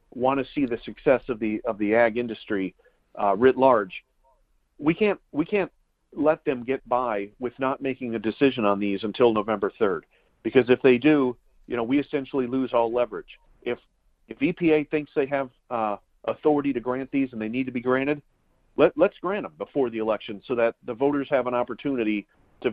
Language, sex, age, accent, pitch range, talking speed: English, male, 50-69, American, 110-130 Hz, 195 wpm